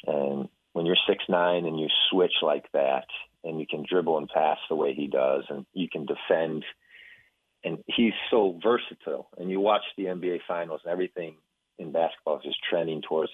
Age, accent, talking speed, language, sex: 40-59, American, 190 wpm, English, male